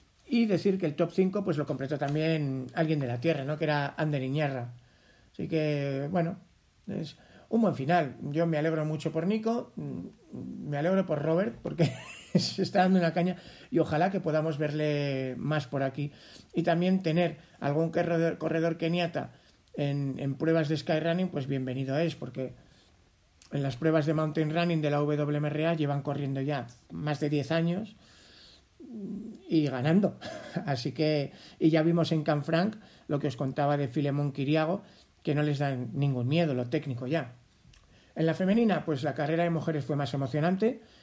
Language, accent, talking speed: Spanish, Spanish, 175 wpm